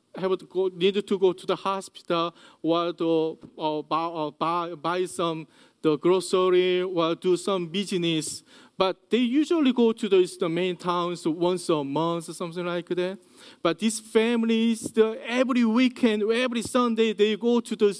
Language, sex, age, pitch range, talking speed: English, male, 40-59, 170-240 Hz, 165 wpm